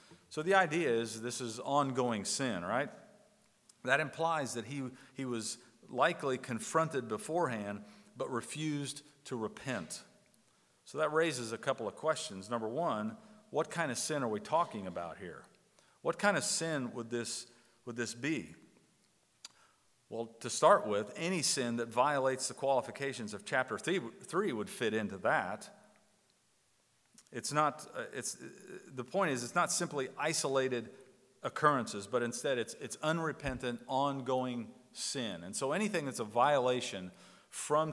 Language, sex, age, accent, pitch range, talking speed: English, male, 50-69, American, 115-145 Hz, 150 wpm